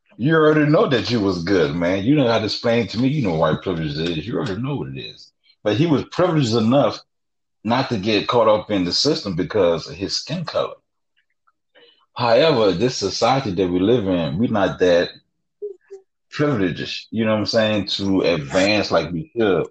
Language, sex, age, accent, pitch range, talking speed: English, male, 30-49, American, 95-135 Hz, 205 wpm